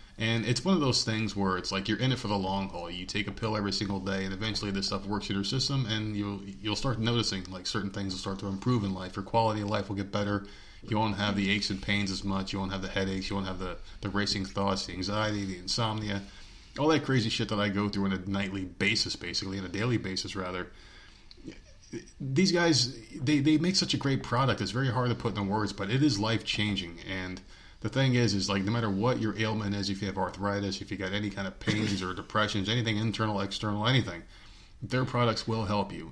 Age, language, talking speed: 30-49, English, 250 wpm